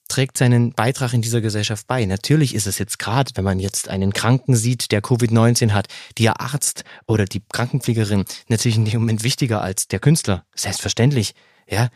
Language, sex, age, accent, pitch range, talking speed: German, male, 30-49, German, 110-145 Hz, 180 wpm